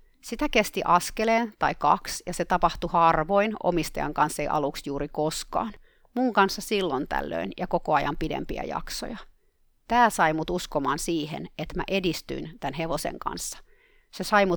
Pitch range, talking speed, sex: 155-195 Hz, 150 wpm, female